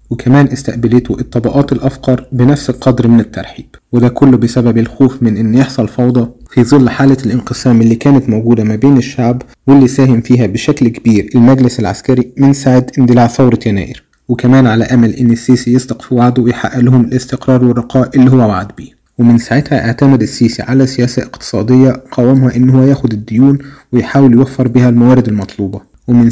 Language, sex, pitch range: Arabic, male, 120-130 Hz